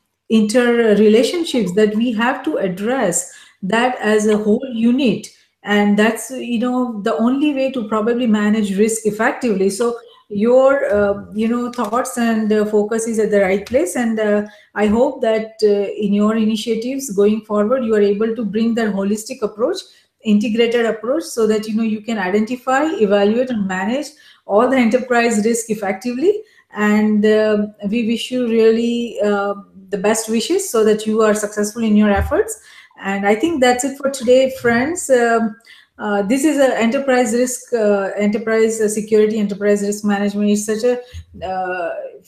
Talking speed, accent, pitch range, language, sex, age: 165 wpm, Indian, 210-245 Hz, English, female, 30-49